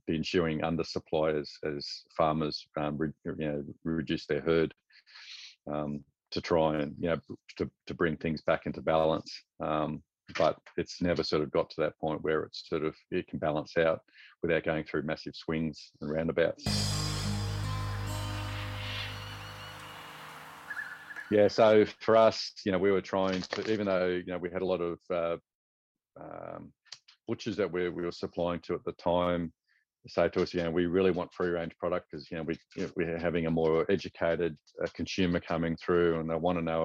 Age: 40-59